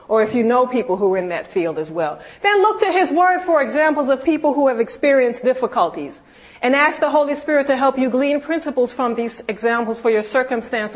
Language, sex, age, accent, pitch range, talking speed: English, female, 40-59, American, 220-295 Hz, 225 wpm